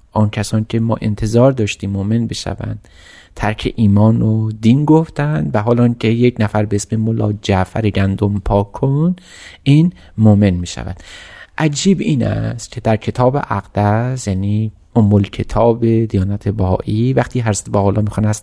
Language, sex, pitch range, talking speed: Persian, male, 100-125 Hz, 155 wpm